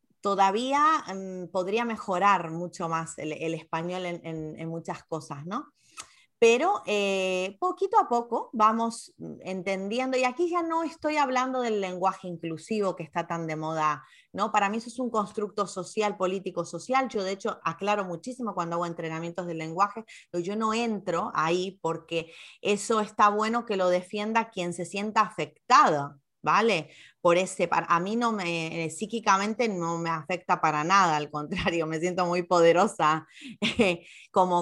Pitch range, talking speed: 165-210 Hz, 160 wpm